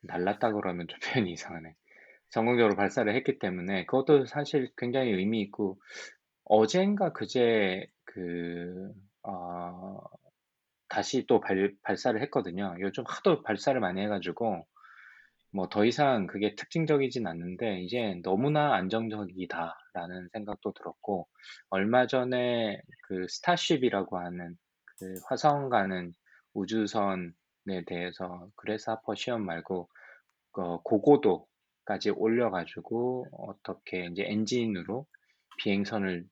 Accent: native